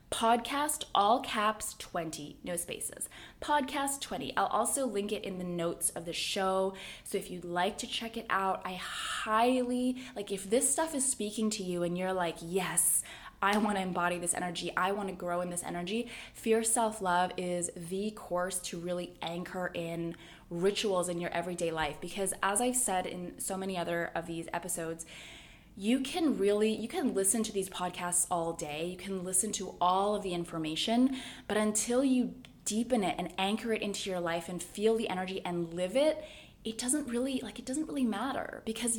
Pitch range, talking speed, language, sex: 180-230 Hz, 190 wpm, English, female